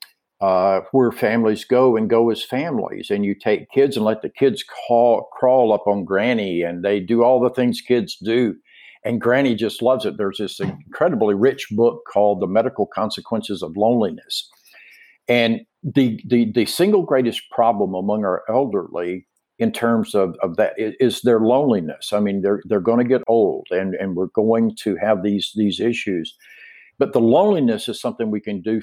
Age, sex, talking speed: 50-69, male, 185 wpm